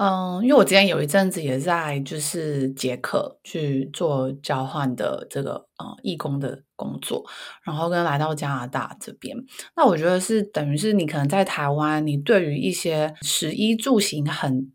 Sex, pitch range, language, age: female, 145-195 Hz, Chinese, 20-39